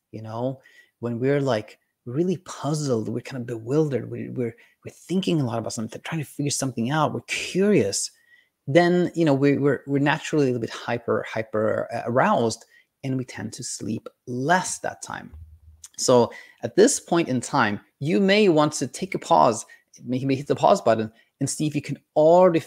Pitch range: 120-175 Hz